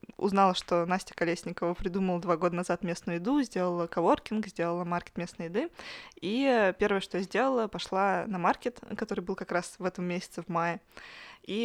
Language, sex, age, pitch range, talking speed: Russian, female, 20-39, 180-215 Hz, 175 wpm